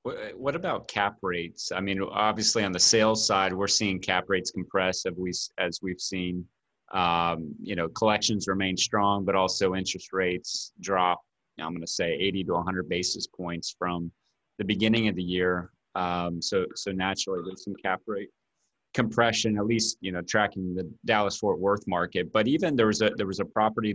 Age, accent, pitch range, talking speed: 30-49, American, 90-100 Hz, 190 wpm